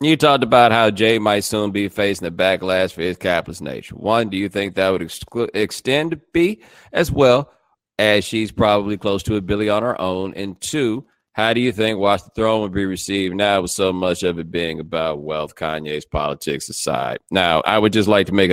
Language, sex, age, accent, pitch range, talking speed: English, male, 40-59, American, 90-110 Hz, 220 wpm